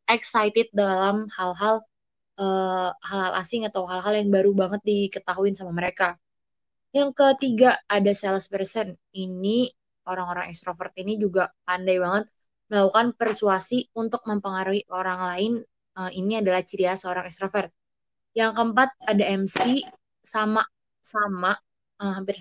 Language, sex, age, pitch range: Indonesian, female, 20-39, 185-210 Hz